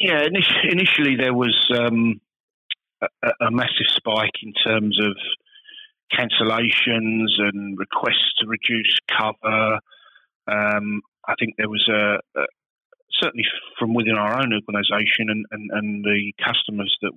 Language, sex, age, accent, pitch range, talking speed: English, male, 40-59, British, 105-115 Hz, 130 wpm